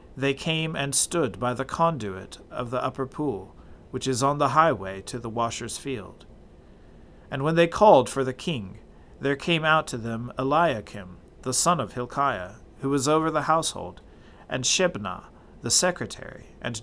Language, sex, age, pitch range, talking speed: English, male, 40-59, 115-155 Hz, 170 wpm